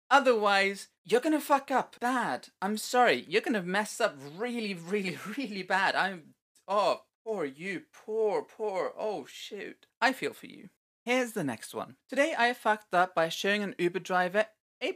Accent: British